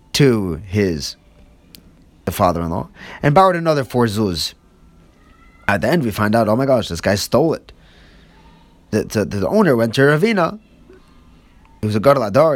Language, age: English, 20-39